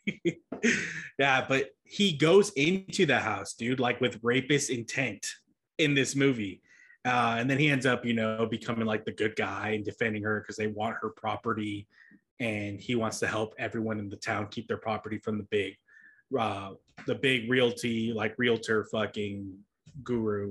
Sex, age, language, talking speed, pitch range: male, 20-39, English, 175 wpm, 110-140 Hz